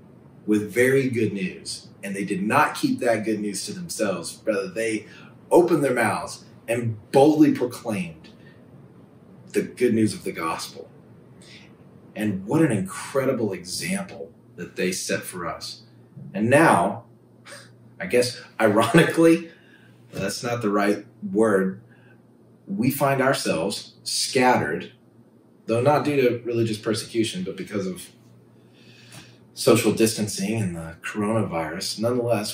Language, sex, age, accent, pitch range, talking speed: English, male, 30-49, American, 100-120 Hz, 125 wpm